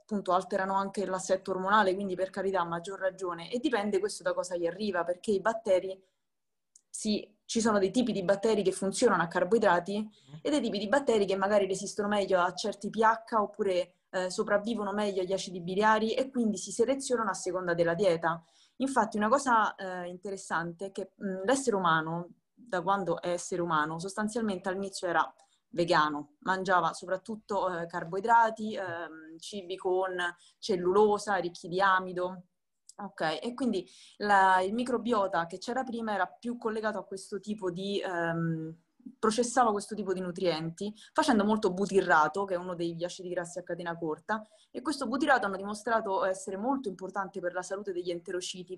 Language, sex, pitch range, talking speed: Italian, female, 180-215 Hz, 165 wpm